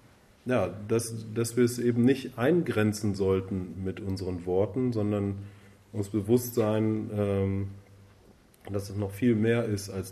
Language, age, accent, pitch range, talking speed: German, 30-49, German, 95-120 Hz, 140 wpm